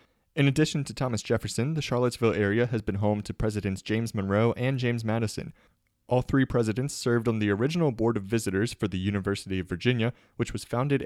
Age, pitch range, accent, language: 30-49, 100-120 Hz, American, English